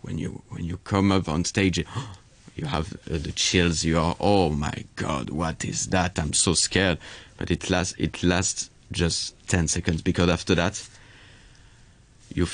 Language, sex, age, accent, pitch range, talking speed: English, male, 30-49, French, 85-100 Hz, 170 wpm